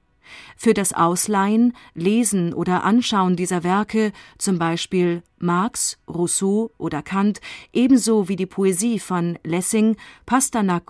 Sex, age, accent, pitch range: female, 30-49, German, 180-220 Hz